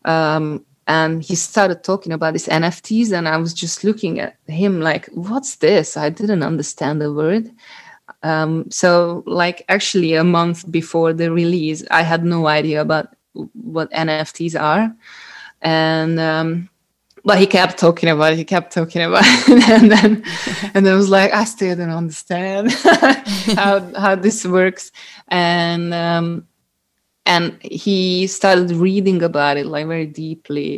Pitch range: 155-190 Hz